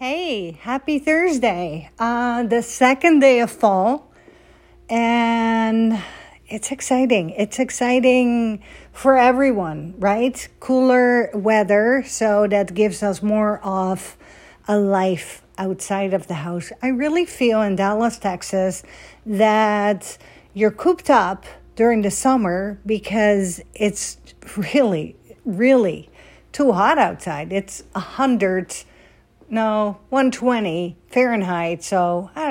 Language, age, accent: English, 50-69, American